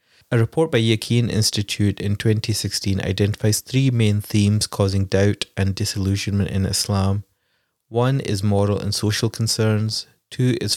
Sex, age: male, 30-49